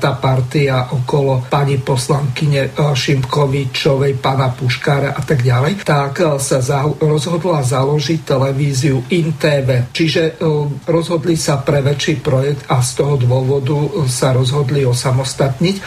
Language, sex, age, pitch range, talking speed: Slovak, male, 50-69, 135-155 Hz, 120 wpm